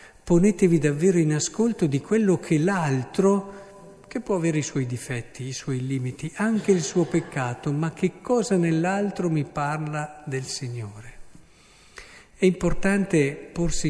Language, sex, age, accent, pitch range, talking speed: Italian, male, 50-69, native, 125-160 Hz, 140 wpm